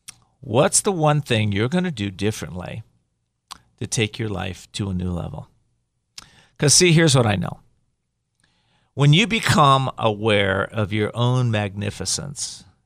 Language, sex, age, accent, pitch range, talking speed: English, male, 40-59, American, 105-135 Hz, 140 wpm